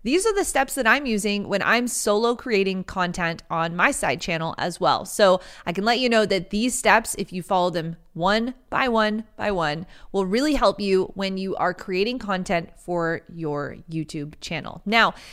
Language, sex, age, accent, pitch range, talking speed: English, female, 30-49, American, 185-235 Hz, 195 wpm